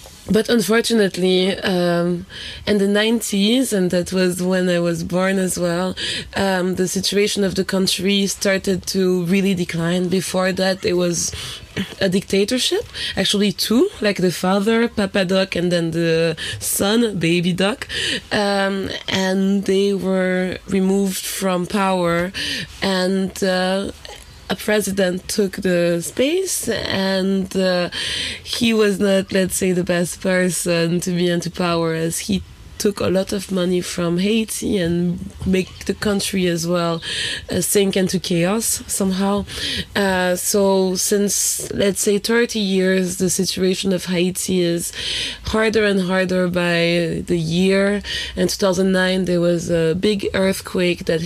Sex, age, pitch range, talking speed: female, 20-39, 175-200 Hz, 135 wpm